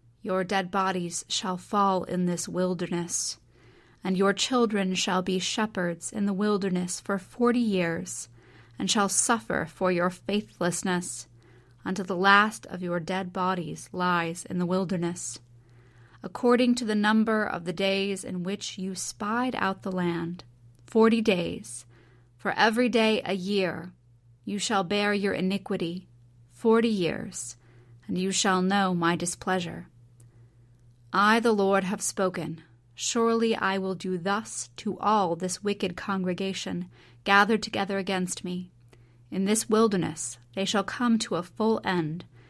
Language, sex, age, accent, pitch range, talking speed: English, female, 30-49, American, 125-205 Hz, 140 wpm